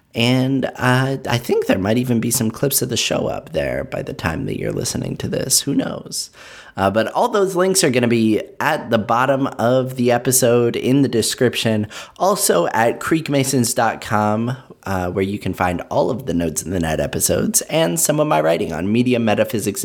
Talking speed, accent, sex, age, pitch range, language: 200 wpm, American, male, 30-49, 95-125 Hz, English